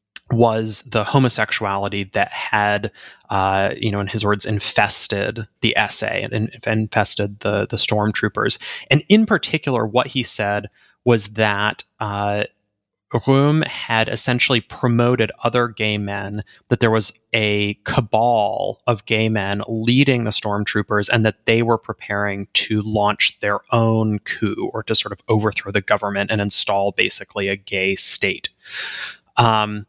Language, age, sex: English, 20-39, male